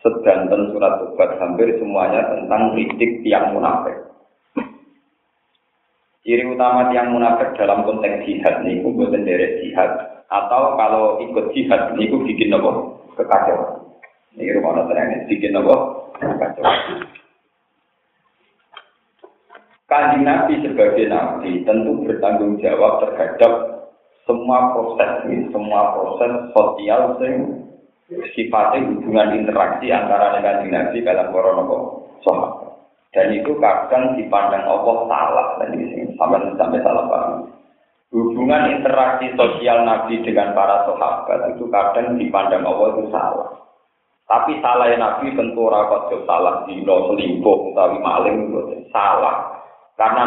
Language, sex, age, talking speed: Indonesian, male, 50-69, 110 wpm